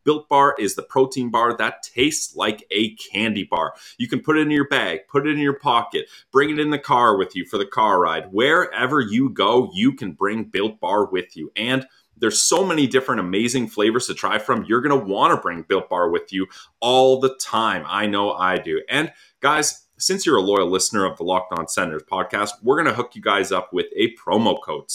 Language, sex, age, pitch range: English, male, 30-49, 110-165 Hz